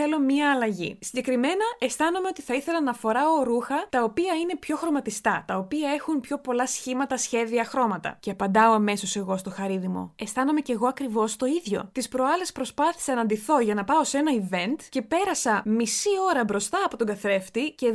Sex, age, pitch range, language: female, 20-39, 220-305 Hz, Greek